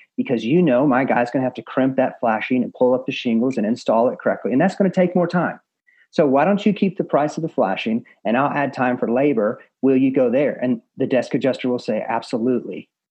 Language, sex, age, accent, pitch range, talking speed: English, male, 40-59, American, 120-170 Hz, 250 wpm